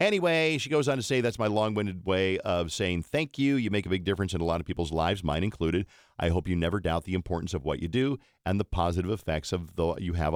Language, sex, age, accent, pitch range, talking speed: English, male, 50-69, American, 85-110 Hz, 265 wpm